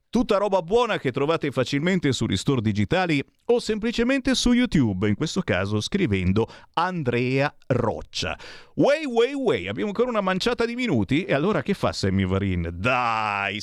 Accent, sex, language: native, male, Italian